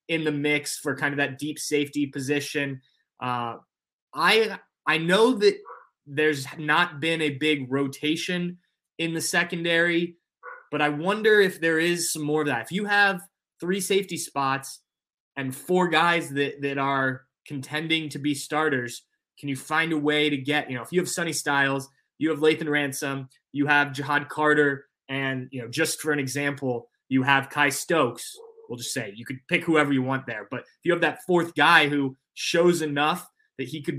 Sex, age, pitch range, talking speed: male, 20-39, 135-165 Hz, 185 wpm